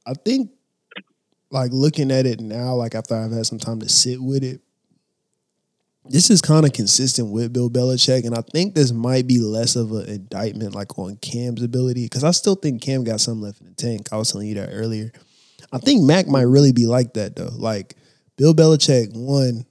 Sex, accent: male, American